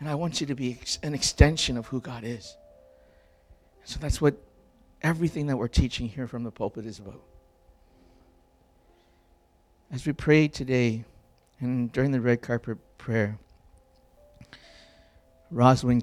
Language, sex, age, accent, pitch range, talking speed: English, male, 60-79, American, 85-125 Hz, 140 wpm